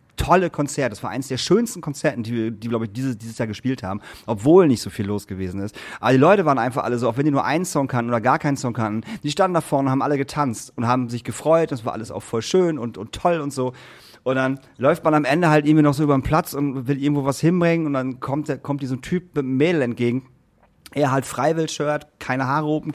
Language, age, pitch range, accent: German, 40-59, 120-155 Hz, German